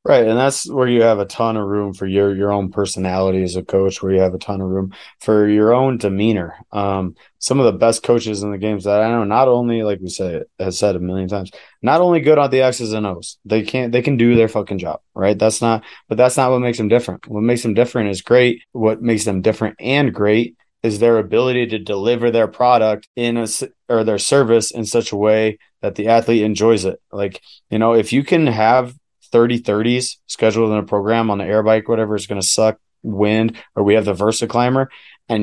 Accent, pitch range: American, 105-120 Hz